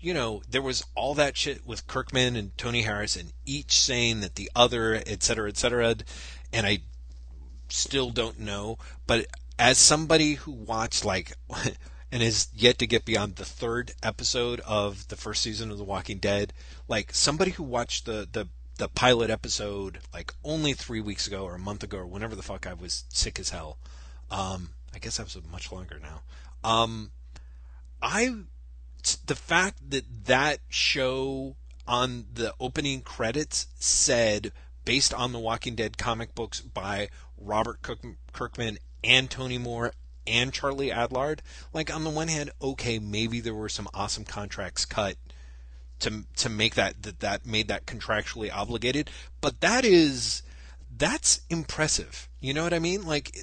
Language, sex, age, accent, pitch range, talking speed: English, male, 30-49, American, 75-120 Hz, 165 wpm